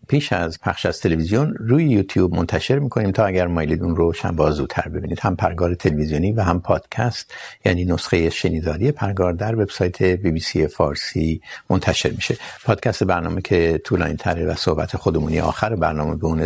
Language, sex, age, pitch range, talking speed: Urdu, male, 60-79, 85-115 Hz, 180 wpm